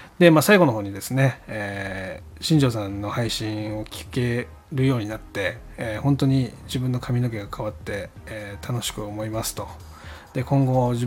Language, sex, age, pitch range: Japanese, male, 20-39, 105-130 Hz